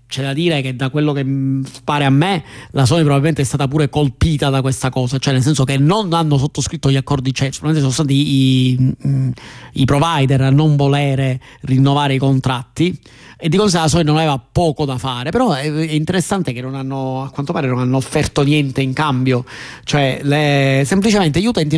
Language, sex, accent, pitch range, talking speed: Italian, male, native, 130-150 Hz, 195 wpm